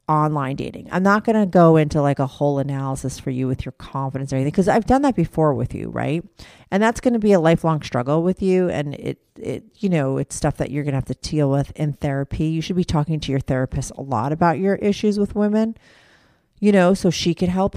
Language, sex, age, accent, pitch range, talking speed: English, female, 40-59, American, 140-185 Hz, 250 wpm